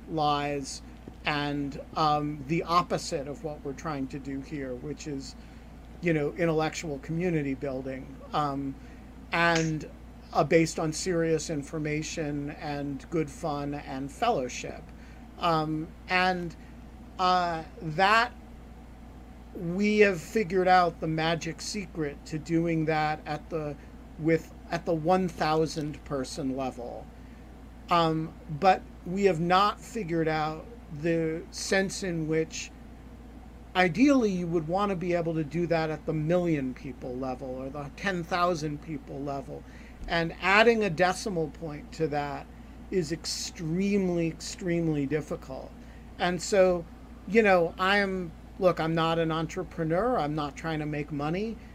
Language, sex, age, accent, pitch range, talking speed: English, male, 50-69, American, 150-180 Hz, 130 wpm